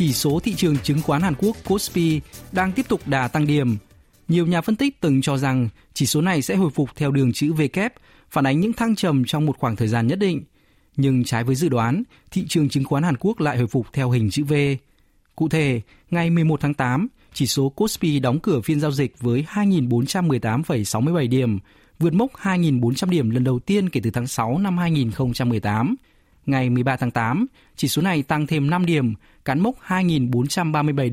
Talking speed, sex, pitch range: 205 wpm, male, 130-175 Hz